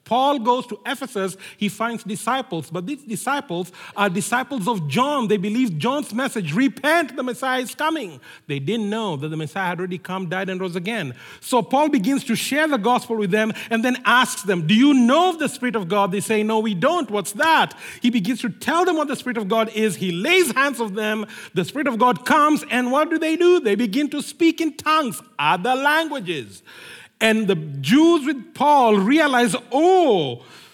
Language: English